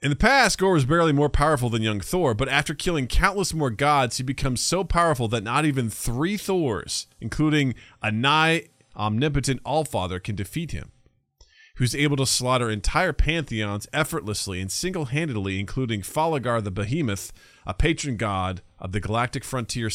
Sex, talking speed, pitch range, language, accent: male, 165 wpm, 105-135 Hz, English, American